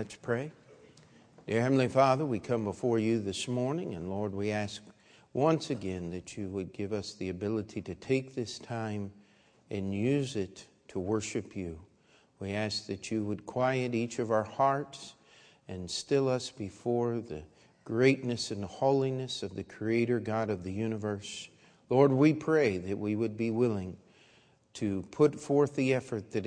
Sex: male